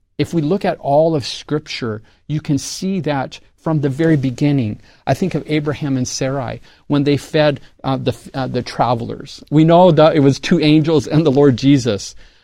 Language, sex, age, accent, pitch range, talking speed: English, male, 40-59, American, 140-190 Hz, 195 wpm